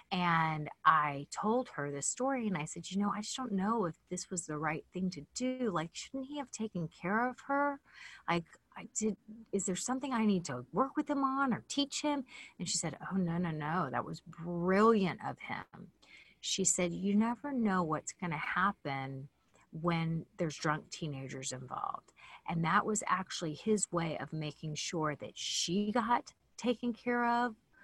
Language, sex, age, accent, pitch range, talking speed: English, female, 30-49, American, 165-230 Hz, 190 wpm